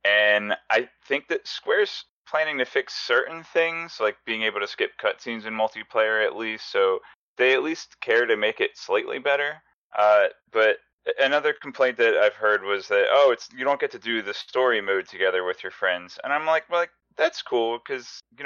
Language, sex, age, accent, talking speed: English, male, 20-39, American, 200 wpm